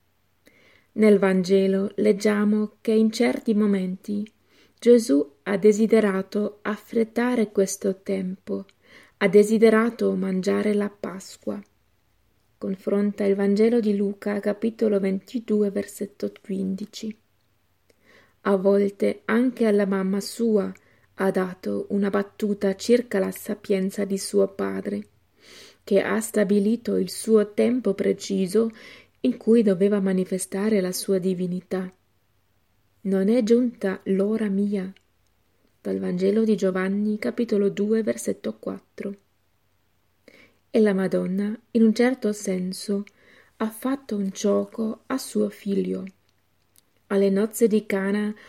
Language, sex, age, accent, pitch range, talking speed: Italian, female, 30-49, native, 190-215 Hz, 110 wpm